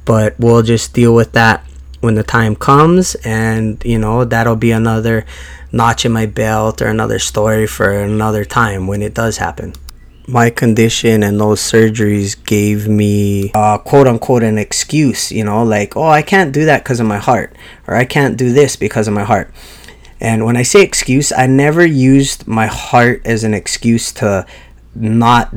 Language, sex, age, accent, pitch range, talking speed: English, male, 20-39, American, 105-125 Hz, 185 wpm